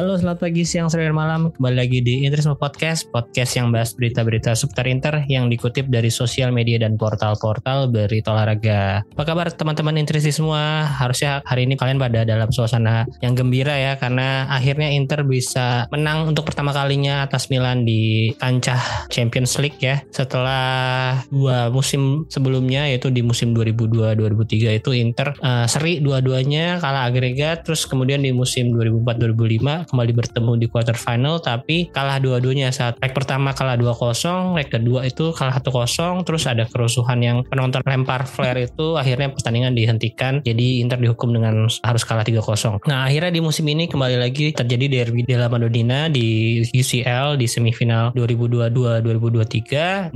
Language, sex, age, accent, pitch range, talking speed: Indonesian, male, 20-39, native, 120-145 Hz, 150 wpm